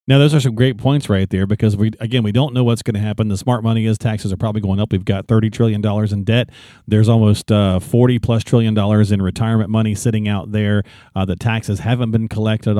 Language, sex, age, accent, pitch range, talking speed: English, male, 40-59, American, 100-125 Hz, 250 wpm